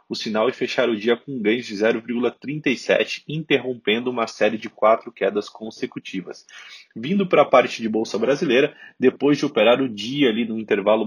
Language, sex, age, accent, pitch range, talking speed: Portuguese, male, 20-39, Brazilian, 115-145 Hz, 180 wpm